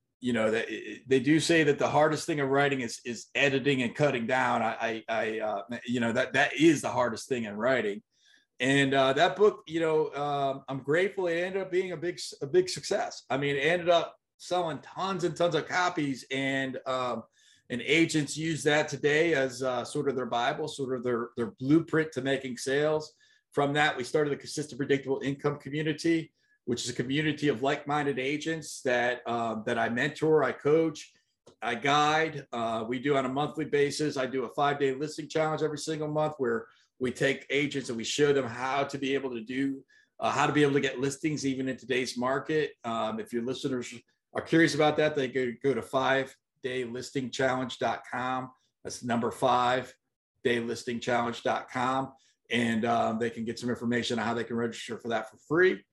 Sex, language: male, English